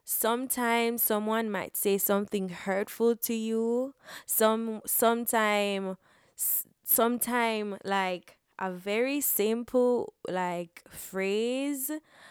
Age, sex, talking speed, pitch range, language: 20-39, female, 85 wpm, 195-245 Hz, English